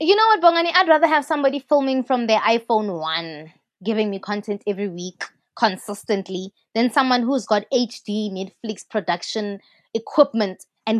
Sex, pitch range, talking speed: female, 200-255 Hz, 155 wpm